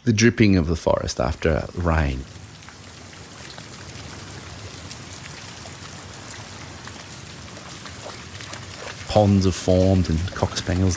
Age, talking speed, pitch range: 30-49, 65 wpm, 90-110 Hz